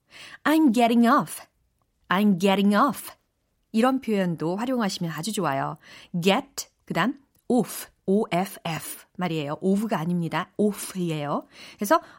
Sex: female